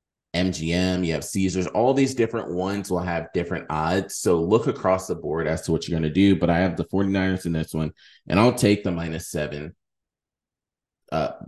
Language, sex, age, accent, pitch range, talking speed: English, male, 30-49, American, 85-100 Hz, 205 wpm